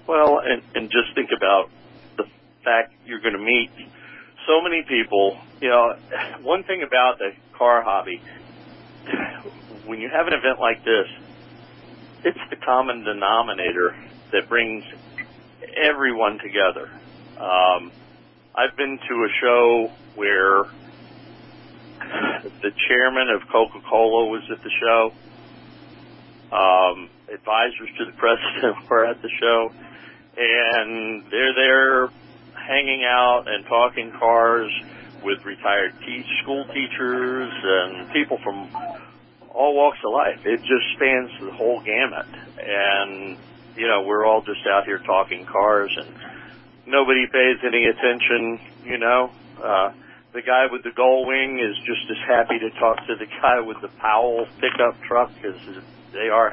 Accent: American